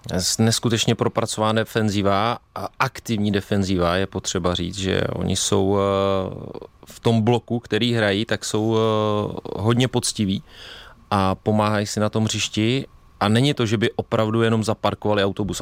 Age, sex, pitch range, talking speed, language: 30-49, male, 105-120 Hz, 140 wpm, Czech